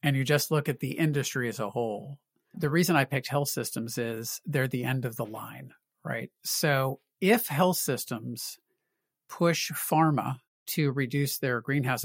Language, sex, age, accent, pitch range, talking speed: English, male, 50-69, American, 125-155 Hz, 170 wpm